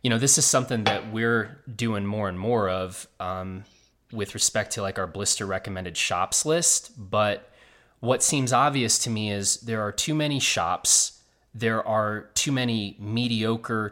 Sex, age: male, 30-49